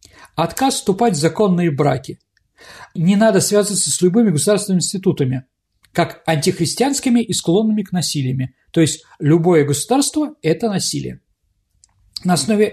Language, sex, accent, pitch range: Russian, male, native, 165-235 Hz